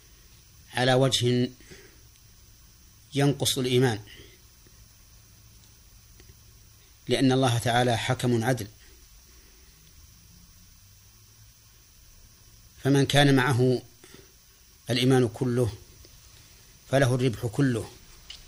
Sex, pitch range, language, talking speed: male, 105-130 Hz, Arabic, 55 wpm